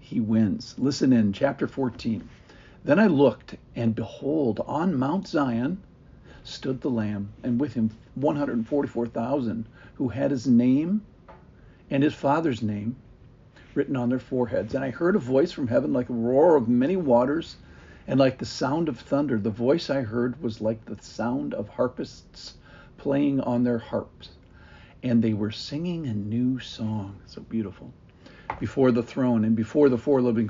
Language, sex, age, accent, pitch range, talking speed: English, male, 50-69, American, 110-135 Hz, 165 wpm